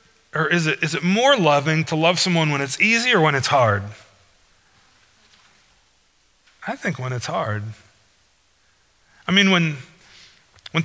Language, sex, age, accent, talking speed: English, male, 30-49, American, 145 wpm